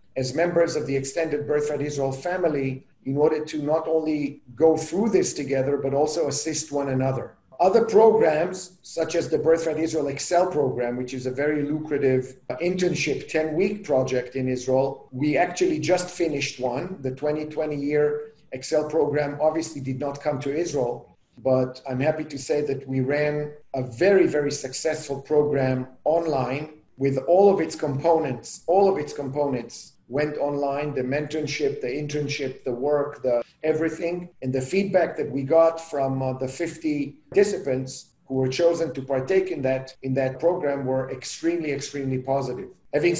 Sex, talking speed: male, 165 wpm